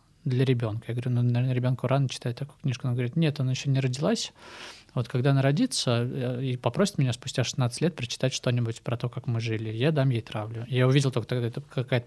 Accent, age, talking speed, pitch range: native, 20-39, 220 wpm, 120-135 Hz